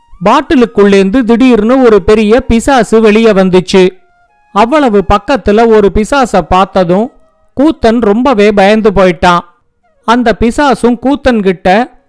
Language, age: Tamil, 50-69